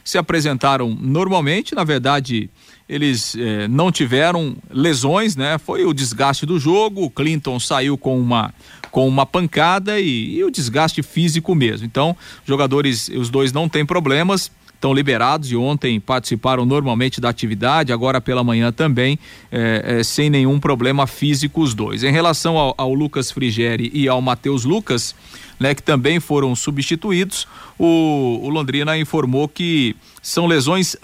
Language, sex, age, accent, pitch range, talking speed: Portuguese, male, 40-59, Brazilian, 130-160 Hz, 150 wpm